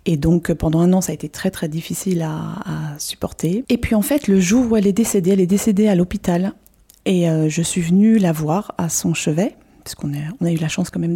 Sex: female